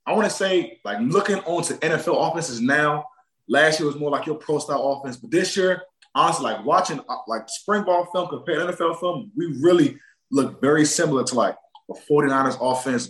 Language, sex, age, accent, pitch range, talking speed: English, male, 20-39, American, 145-200 Hz, 195 wpm